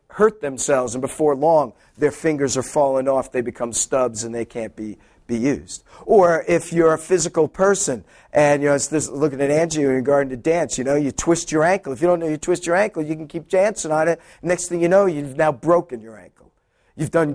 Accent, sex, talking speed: American, male, 240 wpm